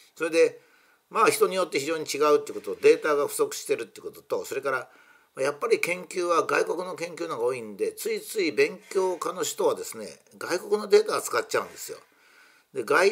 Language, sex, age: Japanese, male, 50-69